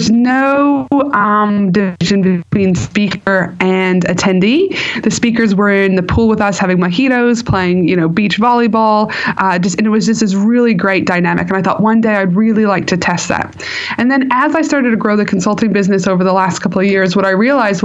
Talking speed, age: 210 wpm, 30-49